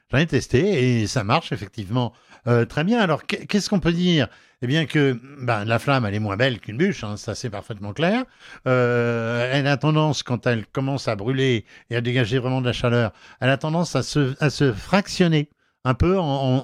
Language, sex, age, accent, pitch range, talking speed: French, male, 60-79, French, 115-155 Hz, 215 wpm